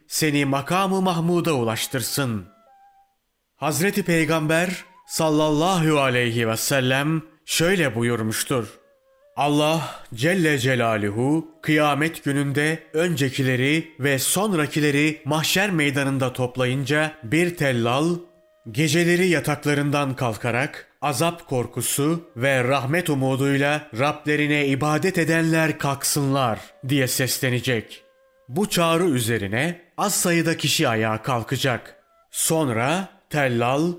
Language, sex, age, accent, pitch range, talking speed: Turkish, male, 30-49, native, 135-165 Hz, 90 wpm